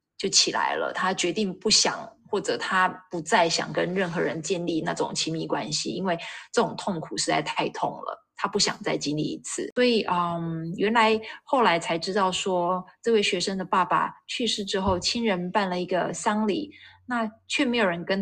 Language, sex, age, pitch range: Chinese, female, 20-39, 175-225 Hz